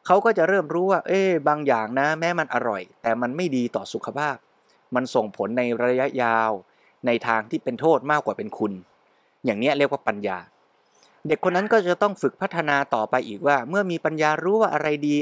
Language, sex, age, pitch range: Thai, male, 20-39, 130-180 Hz